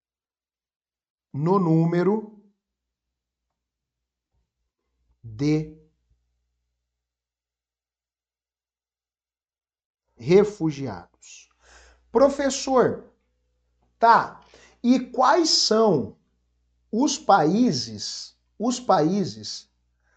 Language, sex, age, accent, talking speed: Portuguese, male, 50-69, Brazilian, 40 wpm